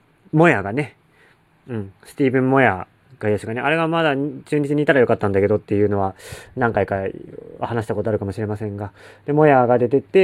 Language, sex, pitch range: Japanese, male, 105-160 Hz